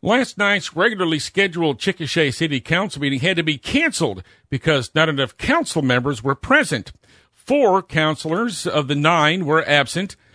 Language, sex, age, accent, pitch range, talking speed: English, male, 50-69, American, 135-170 Hz, 150 wpm